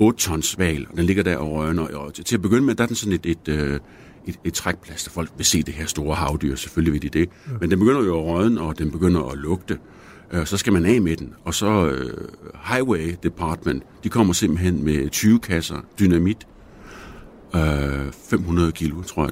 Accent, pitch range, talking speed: native, 80-105 Hz, 210 wpm